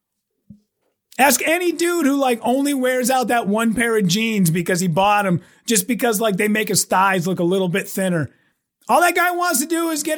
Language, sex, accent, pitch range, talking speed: English, male, American, 215-305 Hz, 220 wpm